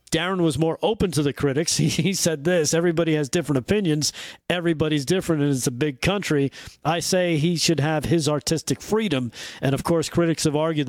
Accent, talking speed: American, 195 wpm